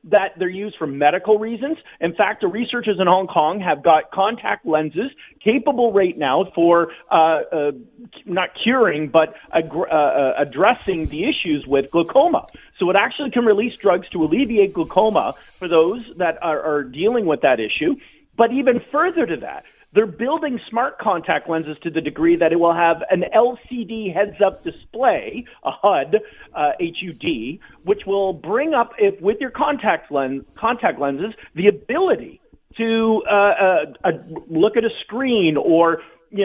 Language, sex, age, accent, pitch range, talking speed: English, male, 40-59, American, 160-235 Hz, 160 wpm